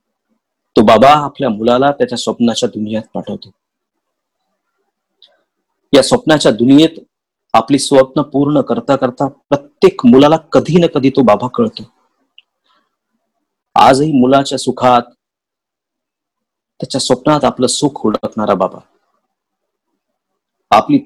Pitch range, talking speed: 130-205 Hz, 90 wpm